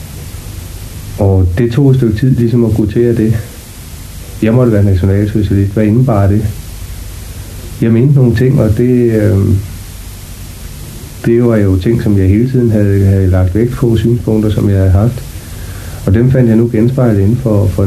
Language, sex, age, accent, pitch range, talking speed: Danish, male, 60-79, native, 95-110 Hz, 170 wpm